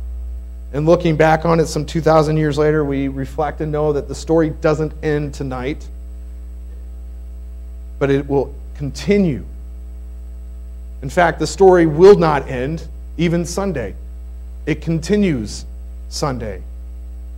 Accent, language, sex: American, English, male